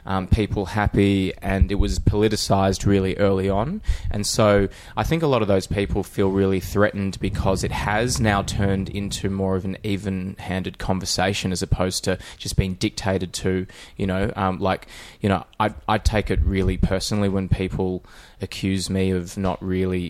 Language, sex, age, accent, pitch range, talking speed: English, male, 20-39, Australian, 95-105 Hz, 175 wpm